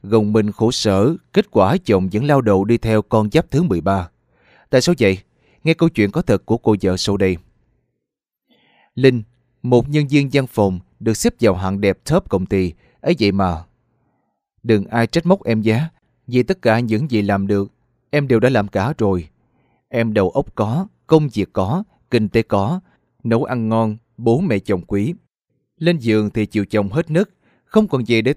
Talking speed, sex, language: 195 wpm, male, Vietnamese